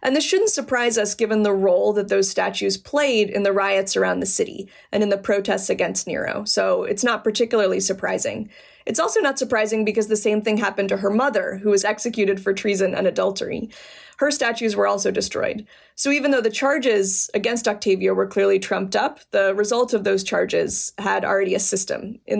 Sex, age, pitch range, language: female, 20-39, 195-250 Hz, English